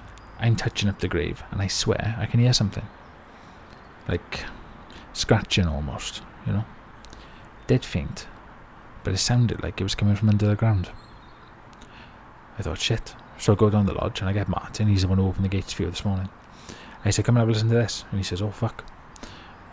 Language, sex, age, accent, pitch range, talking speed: English, male, 30-49, British, 100-130 Hz, 205 wpm